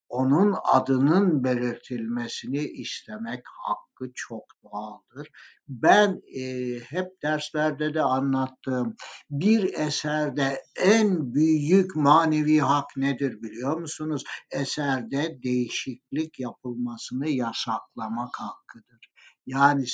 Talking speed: 85 wpm